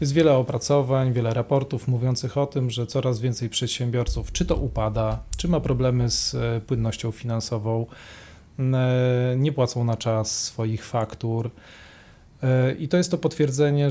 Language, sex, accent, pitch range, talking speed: Polish, male, native, 120-145 Hz, 140 wpm